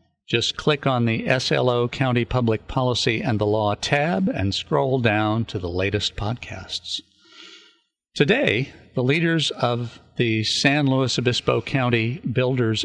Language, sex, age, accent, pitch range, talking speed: English, male, 60-79, American, 105-130 Hz, 135 wpm